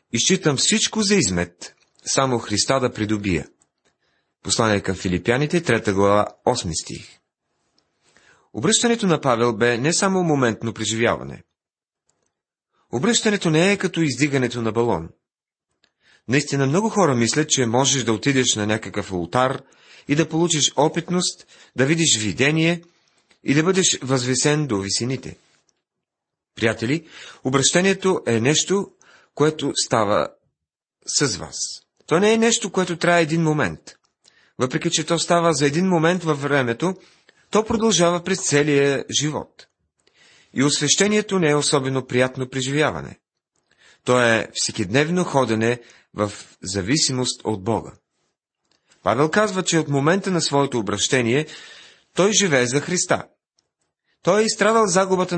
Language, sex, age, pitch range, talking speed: Bulgarian, male, 30-49, 120-175 Hz, 125 wpm